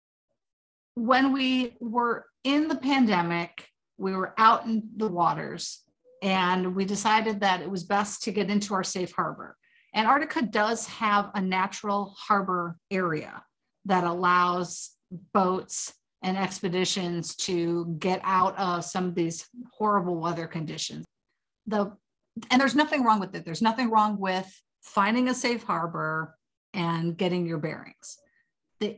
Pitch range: 180-240 Hz